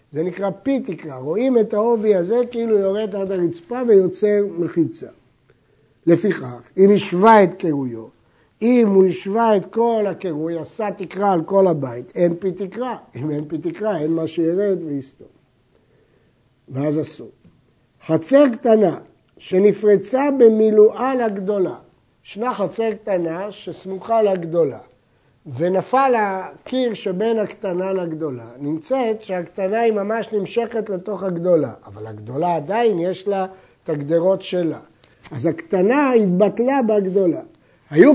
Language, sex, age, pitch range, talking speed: Hebrew, male, 60-79, 165-220 Hz, 125 wpm